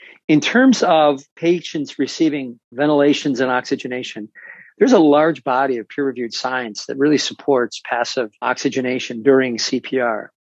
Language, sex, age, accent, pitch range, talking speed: English, male, 50-69, American, 130-165 Hz, 125 wpm